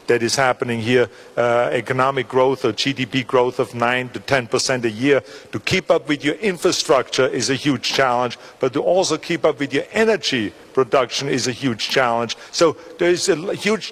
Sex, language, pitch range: male, Chinese, 130-155 Hz